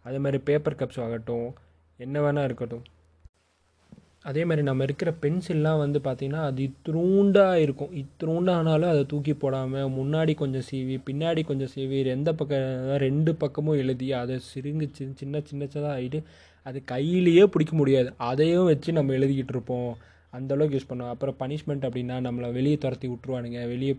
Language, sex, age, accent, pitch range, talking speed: Tamil, male, 20-39, native, 120-145 Hz, 140 wpm